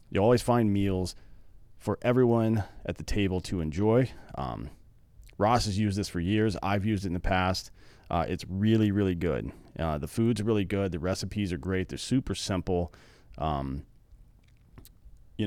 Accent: American